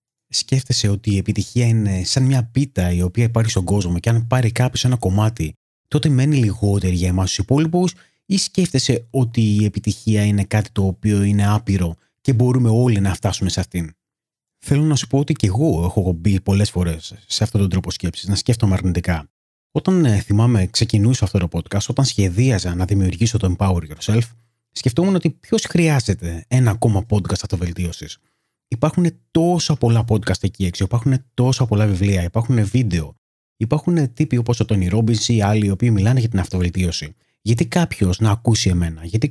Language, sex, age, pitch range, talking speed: Greek, male, 30-49, 95-125 Hz, 175 wpm